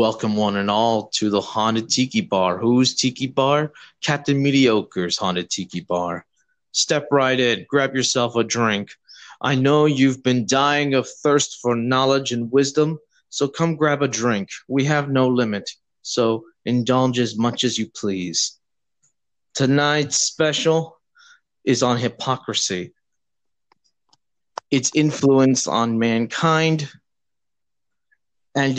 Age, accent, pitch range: 20-39, American, 110-140 Hz